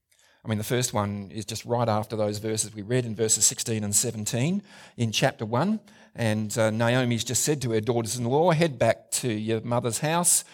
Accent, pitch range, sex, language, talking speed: Australian, 105-130 Hz, male, English, 200 wpm